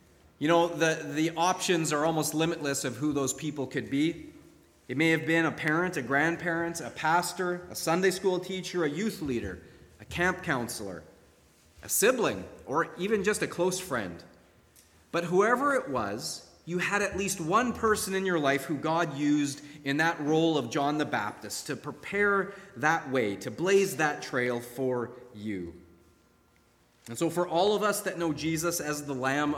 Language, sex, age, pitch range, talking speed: English, male, 30-49, 125-175 Hz, 175 wpm